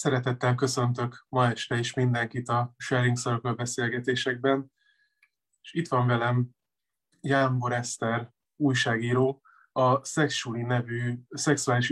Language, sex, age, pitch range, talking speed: Hungarian, male, 20-39, 120-135 Hz, 100 wpm